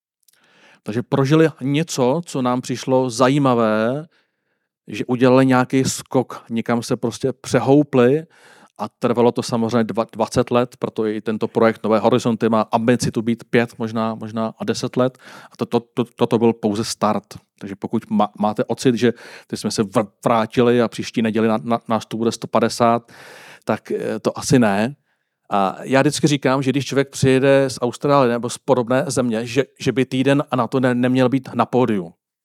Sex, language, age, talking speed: male, Czech, 40-59, 170 wpm